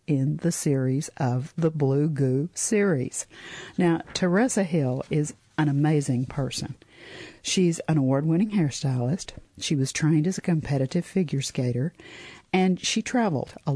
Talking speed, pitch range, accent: 135 wpm, 135-170 Hz, American